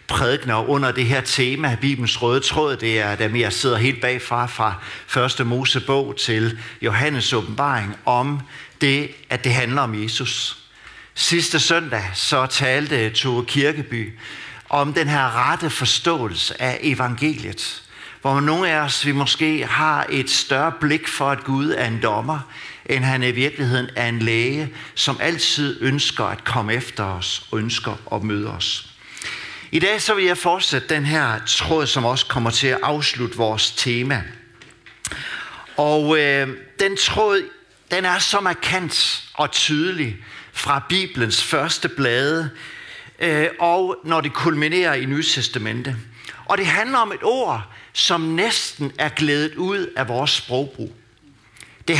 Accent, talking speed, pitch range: native, 150 wpm, 115-150 Hz